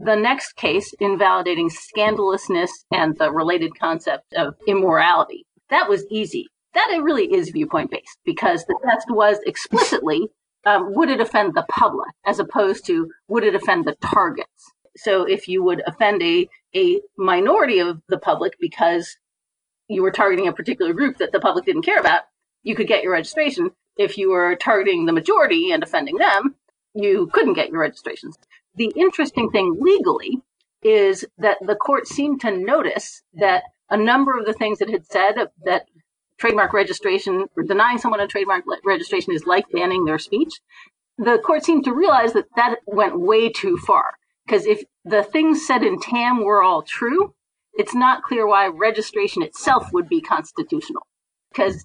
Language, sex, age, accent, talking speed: English, female, 40-59, American, 170 wpm